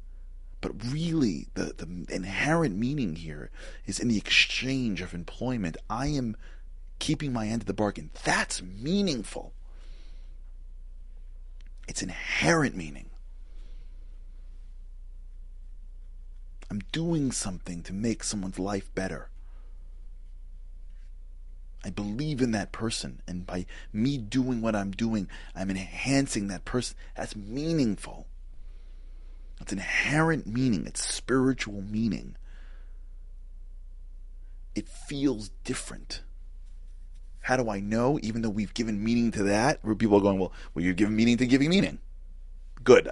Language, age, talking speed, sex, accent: English, 30-49, 120 wpm, male, American